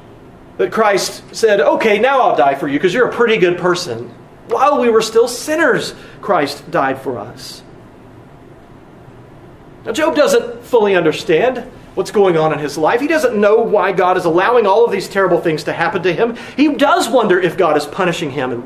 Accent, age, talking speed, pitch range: American, 40-59, 195 wpm, 180-250 Hz